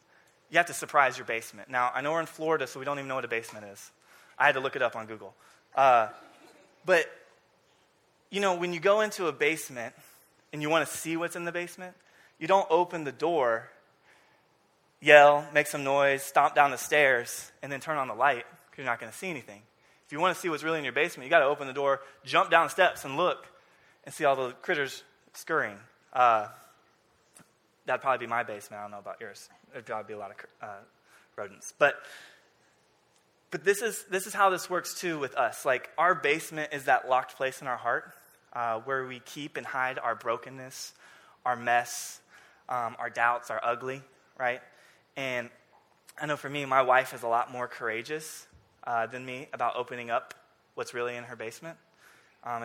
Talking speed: 210 wpm